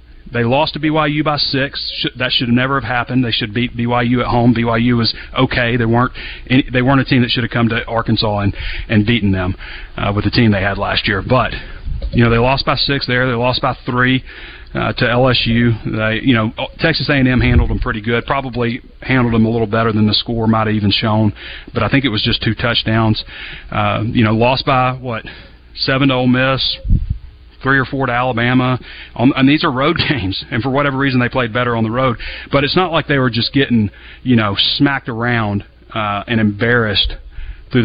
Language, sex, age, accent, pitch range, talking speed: English, male, 30-49, American, 110-130 Hz, 210 wpm